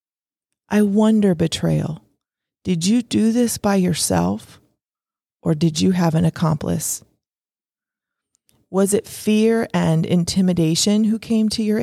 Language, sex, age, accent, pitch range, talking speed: English, female, 30-49, American, 155-185 Hz, 120 wpm